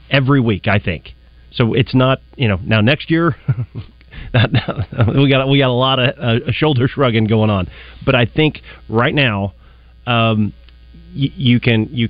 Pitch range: 105-125 Hz